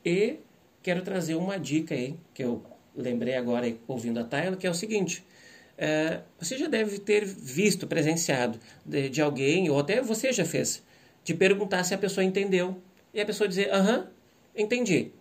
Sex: male